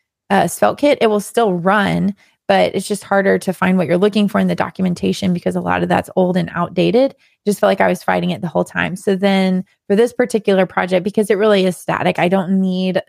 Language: English